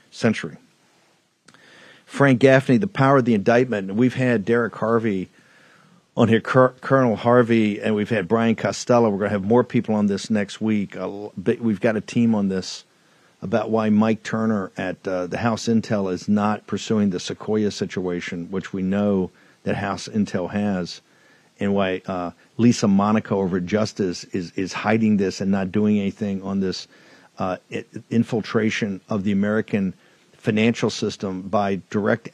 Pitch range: 100-120 Hz